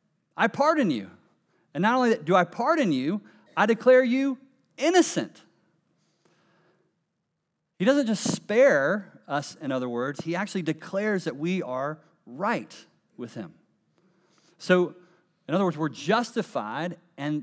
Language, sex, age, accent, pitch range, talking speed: English, male, 40-59, American, 130-180 Hz, 130 wpm